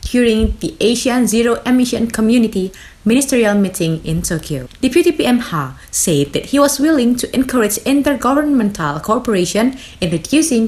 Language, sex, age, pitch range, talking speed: Indonesian, female, 20-39, 175-255 Hz, 135 wpm